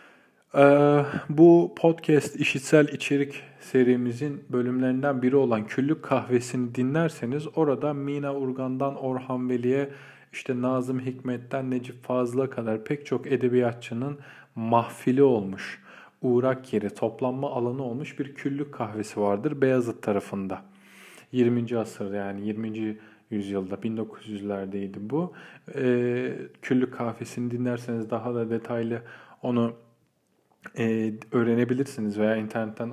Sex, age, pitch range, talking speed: male, 40-59, 115-140 Hz, 105 wpm